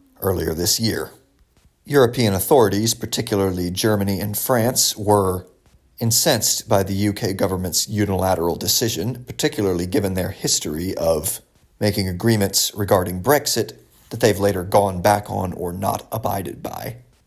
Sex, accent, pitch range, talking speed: male, American, 95-120 Hz, 125 wpm